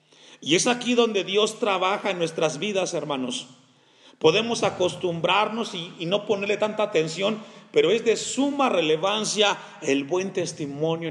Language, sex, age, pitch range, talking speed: Spanish, male, 40-59, 160-210 Hz, 140 wpm